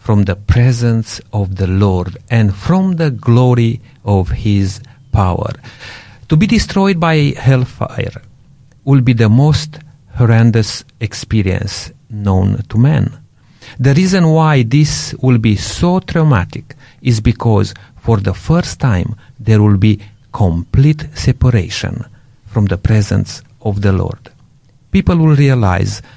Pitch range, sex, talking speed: 105-140 Hz, male, 125 wpm